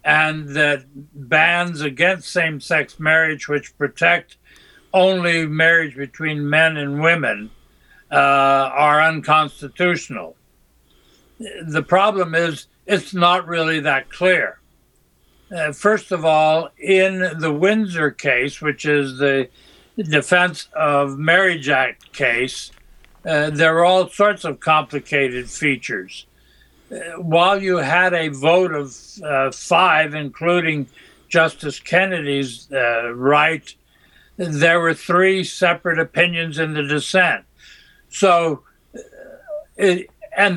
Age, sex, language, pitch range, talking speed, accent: 60-79, male, English, 150-180 Hz, 105 wpm, American